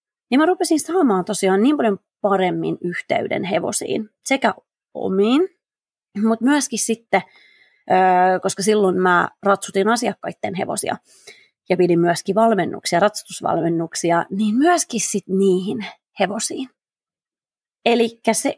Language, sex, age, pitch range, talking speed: Finnish, female, 30-49, 180-245 Hz, 105 wpm